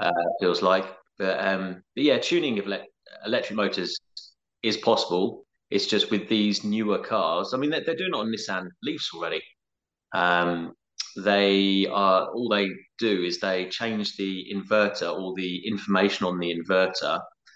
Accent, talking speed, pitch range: British, 150 wpm, 95-110 Hz